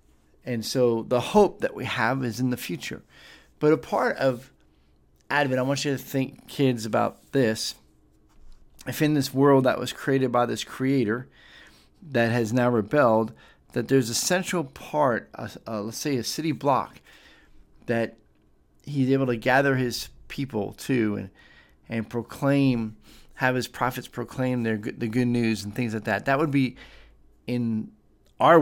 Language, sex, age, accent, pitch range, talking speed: English, male, 40-59, American, 110-135 Hz, 160 wpm